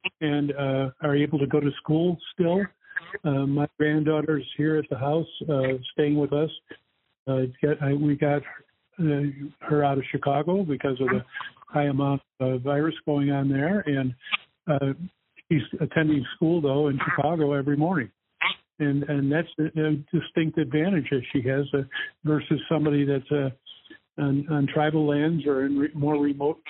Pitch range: 140-160 Hz